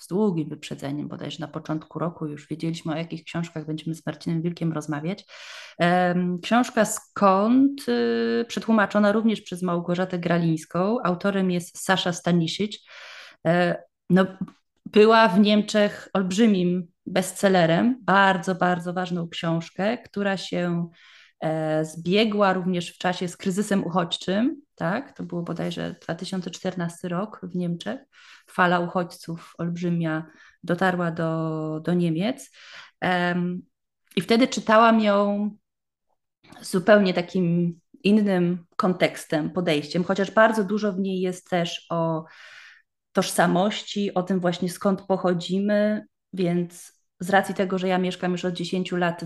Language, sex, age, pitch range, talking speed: Polish, female, 20-39, 170-200 Hz, 120 wpm